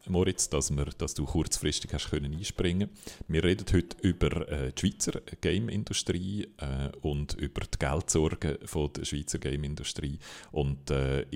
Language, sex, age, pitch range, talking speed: German, male, 40-59, 70-85 Hz, 155 wpm